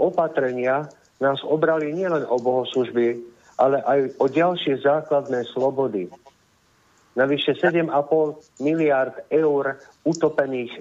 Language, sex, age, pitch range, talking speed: Slovak, male, 50-69, 125-155 Hz, 95 wpm